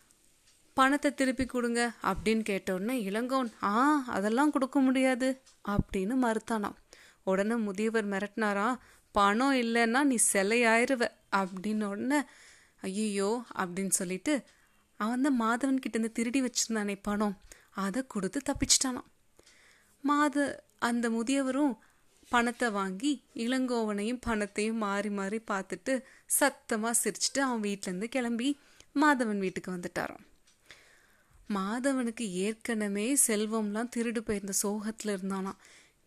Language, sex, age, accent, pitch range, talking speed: Tamil, female, 30-49, native, 205-250 Hz, 100 wpm